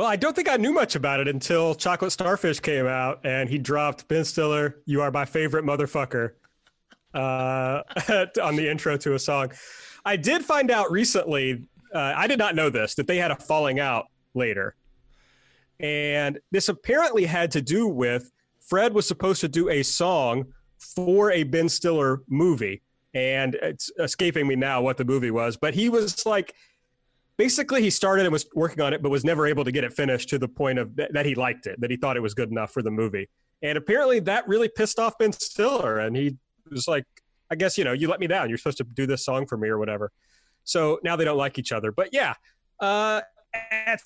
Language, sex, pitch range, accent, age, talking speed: English, male, 135-195 Hz, American, 30-49, 215 wpm